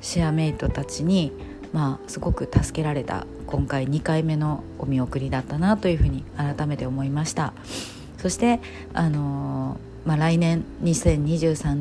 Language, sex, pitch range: Japanese, female, 135-170 Hz